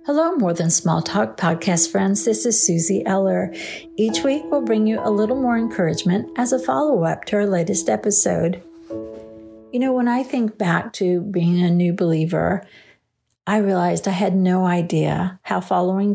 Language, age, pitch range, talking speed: English, 50-69, 180-225 Hz, 170 wpm